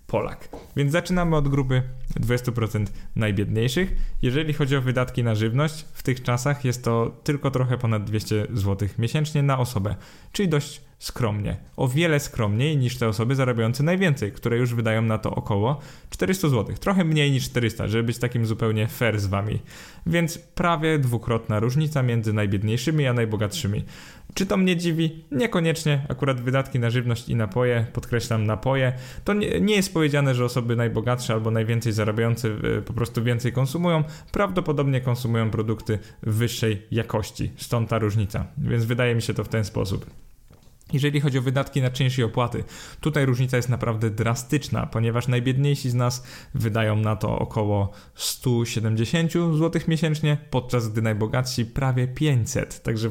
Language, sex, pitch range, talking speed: Polish, male, 110-145 Hz, 155 wpm